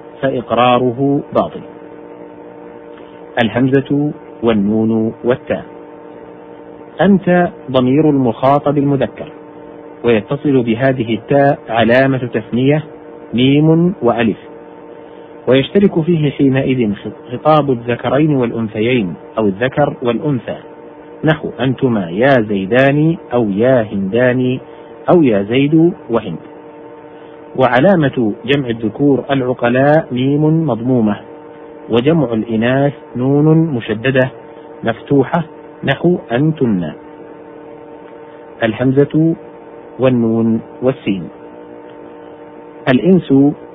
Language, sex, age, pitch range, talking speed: Arabic, male, 50-69, 120-150 Hz, 75 wpm